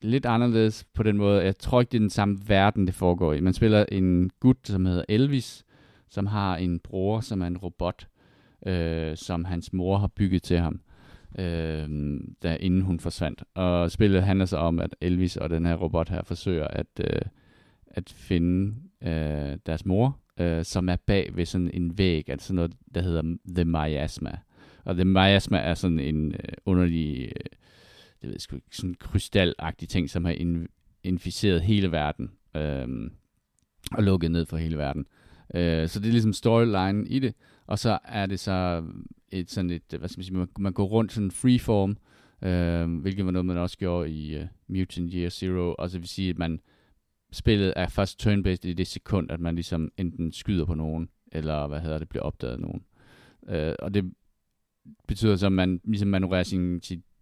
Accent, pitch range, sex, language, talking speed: native, 85-100 Hz, male, Danish, 190 wpm